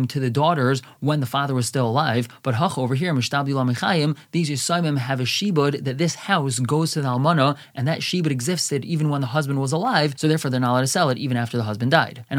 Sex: male